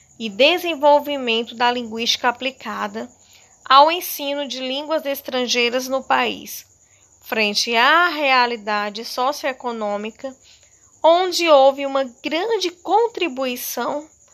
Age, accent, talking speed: 20-39, Brazilian, 90 wpm